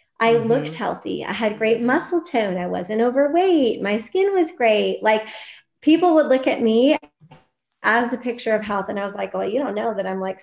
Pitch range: 205-250 Hz